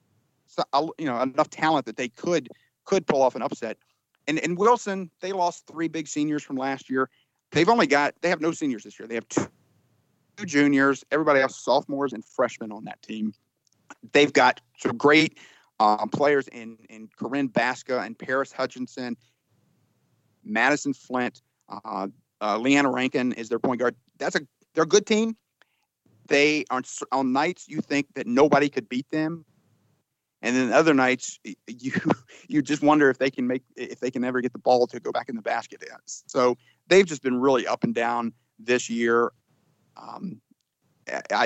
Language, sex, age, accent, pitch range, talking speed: English, male, 40-59, American, 120-150 Hz, 180 wpm